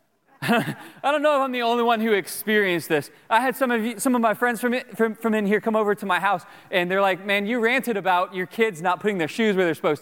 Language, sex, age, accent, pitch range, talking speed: English, male, 30-49, American, 195-250 Hz, 280 wpm